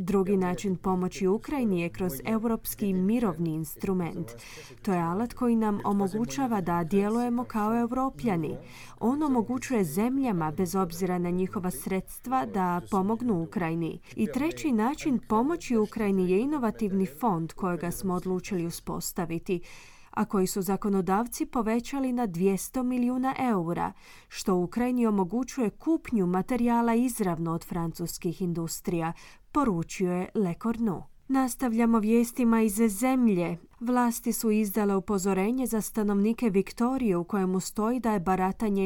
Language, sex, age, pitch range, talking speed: Croatian, female, 20-39, 185-235 Hz, 125 wpm